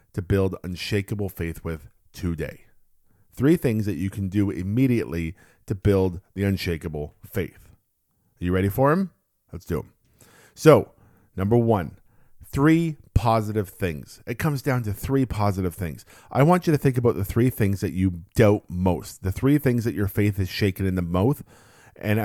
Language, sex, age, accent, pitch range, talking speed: English, male, 40-59, American, 95-115 Hz, 175 wpm